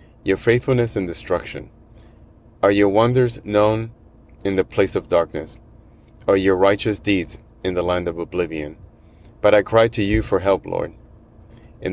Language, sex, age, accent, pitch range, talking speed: English, male, 30-49, American, 90-110 Hz, 155 wpm